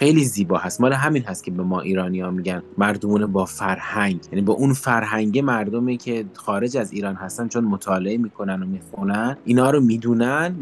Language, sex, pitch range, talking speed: English, male, 110-135 Hz, 185 wpm